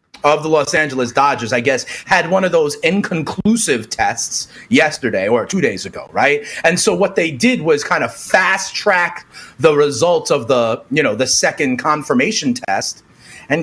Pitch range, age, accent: 180-250 Hz, 30-49, American